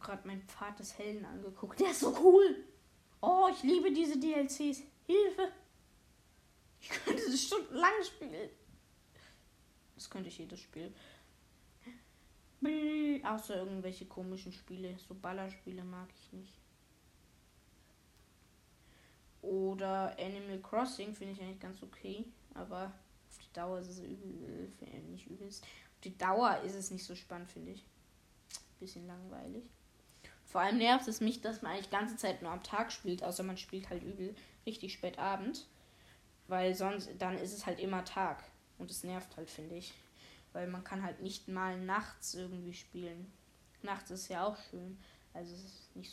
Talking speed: 155 wpm